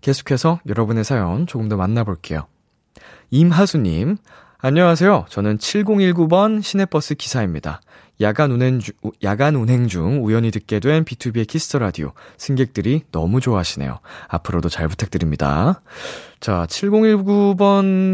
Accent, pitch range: native, 90-150 Hz